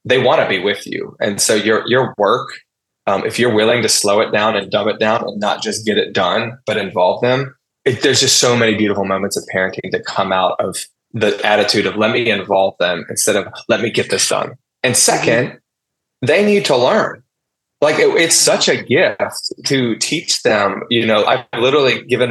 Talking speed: 210 wpm